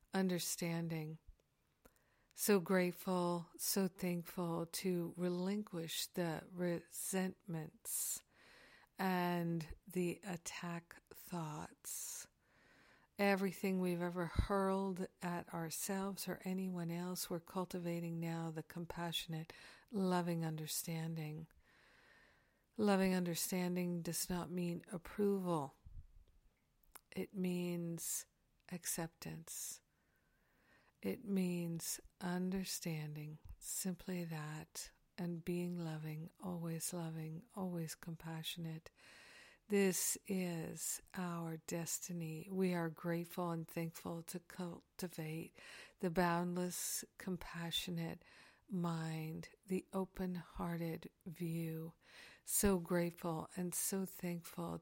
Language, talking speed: English, 80 wpm